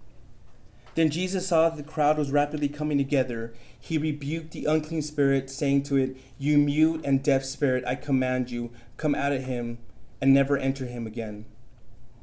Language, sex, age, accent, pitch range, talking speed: English, male, 30-49, American, 125-150 Hz, 170 wpm